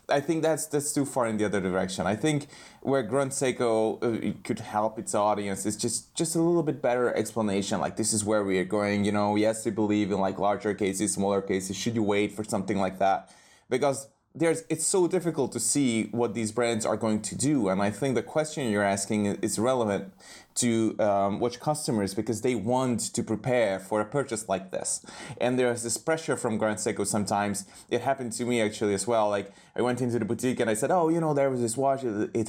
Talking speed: 225 wpm